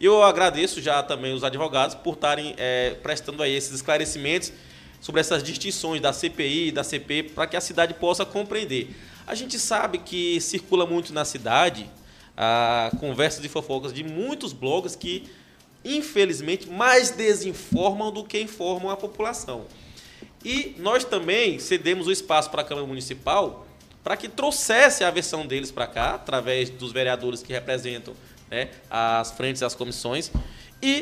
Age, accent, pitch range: 20-39, Brazilian, 135-205 Hz